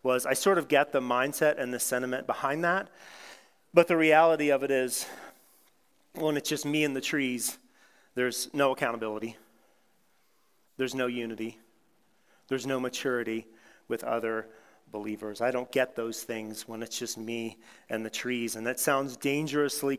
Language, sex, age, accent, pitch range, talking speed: English, male, 30-49, American, 115-145 Hz, 160 wpm